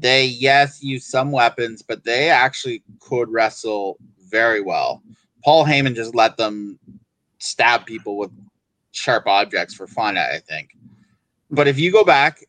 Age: 20-39